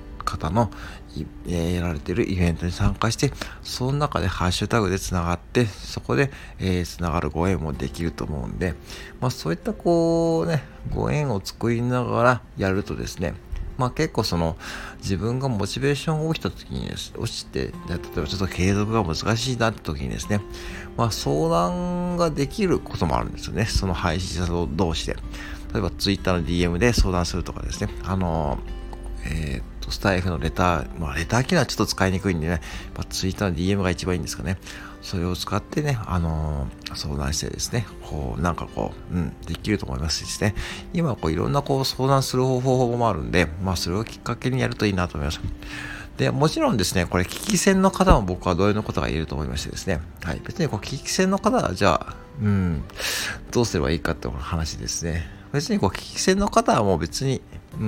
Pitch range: 85-120 Hz